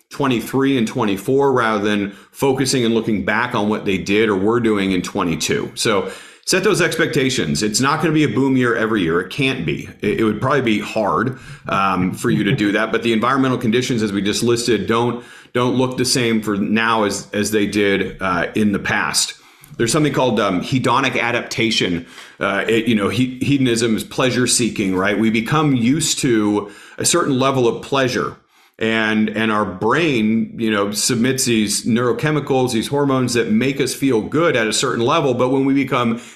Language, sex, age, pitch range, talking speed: English, male, 40-59, 110-145 Hz, 190 wpm